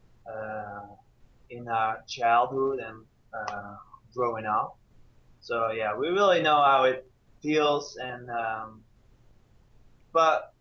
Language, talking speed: English, 105 wpm